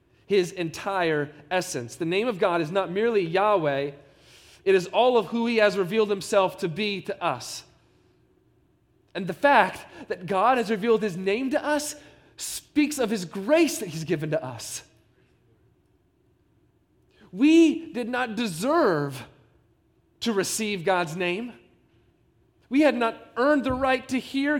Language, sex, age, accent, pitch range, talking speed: English, male, 30-49, American, 170-230 Hz, 145 wpm